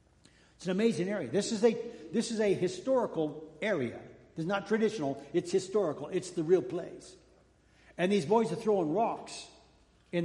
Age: 60-79